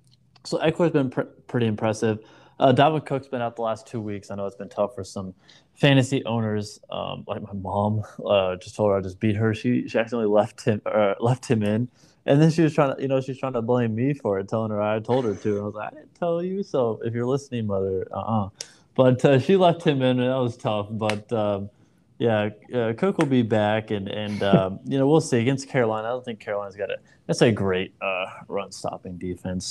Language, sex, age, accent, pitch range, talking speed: English, male, 20-39, American, 100-125 Hz, 250 wpm